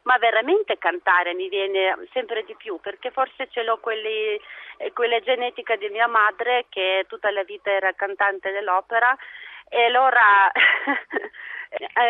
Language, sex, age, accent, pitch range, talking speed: Italian, female, 30-49, native, 195-255 Hz, 135 wpm